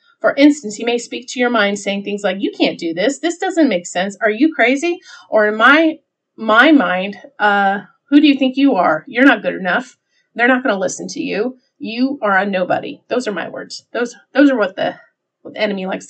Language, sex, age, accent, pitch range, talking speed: English, female, 30-49, American, 190-265 Hz, 230 wpm